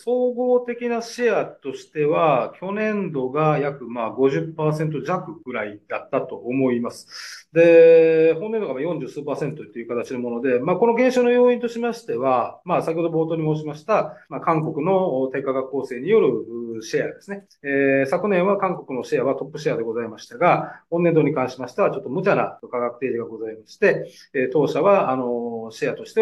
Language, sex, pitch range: Japanese, male, 125-205 Hz